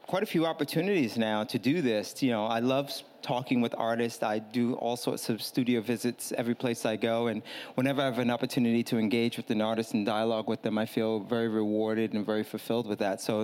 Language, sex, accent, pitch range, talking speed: English, male, American, 120-145 Hz, 230 wpm